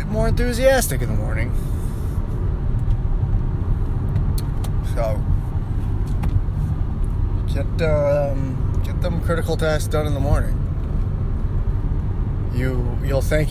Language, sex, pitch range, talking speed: English, male, 95-125 Hz, 85 wpm